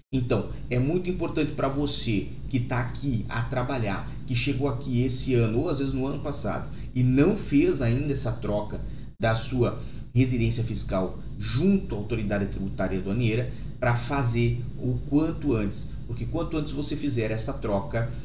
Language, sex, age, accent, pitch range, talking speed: Portuguese, male, 30-49, Brazilian, 105-130 Hz, 160 wpm